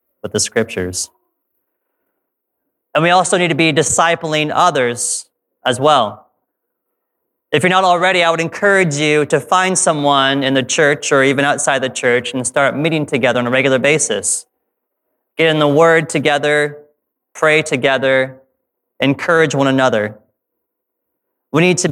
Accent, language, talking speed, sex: American, English, 140 wpm, male